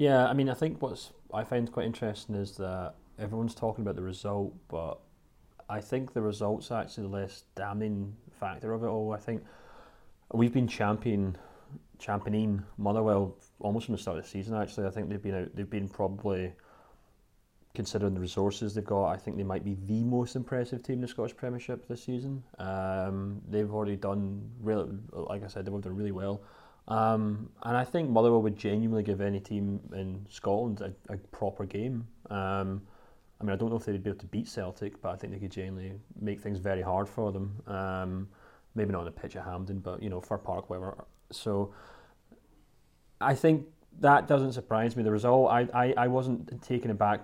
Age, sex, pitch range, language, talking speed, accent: 30-49, male, 95-115 Hz, English, 195 wpm, British